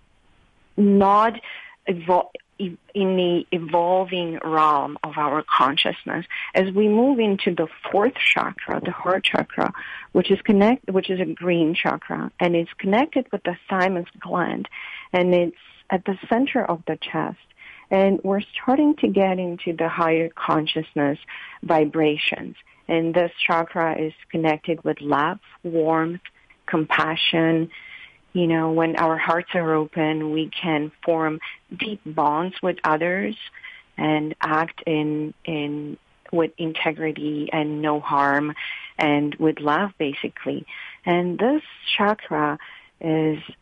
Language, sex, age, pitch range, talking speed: English, female, 40-59, 155-190 Hz, 125 wpm